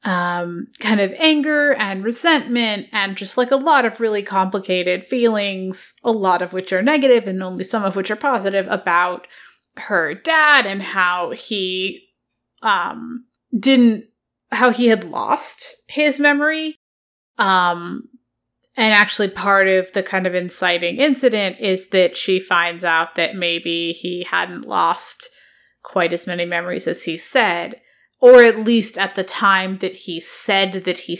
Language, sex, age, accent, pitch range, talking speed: English, female, 30-49, American, 180-235 Hz, 155 wpm